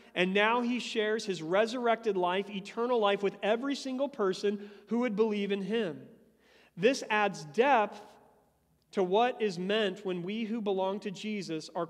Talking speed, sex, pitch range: 160 wpm, male, 190-235 Hz